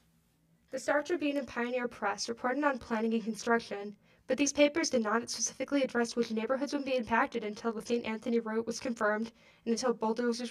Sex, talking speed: female, 190 wpm